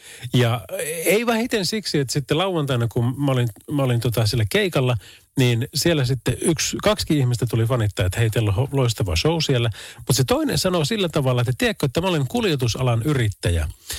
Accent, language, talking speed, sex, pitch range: native, Finnish, 180 wpm, male, 110-150 Hz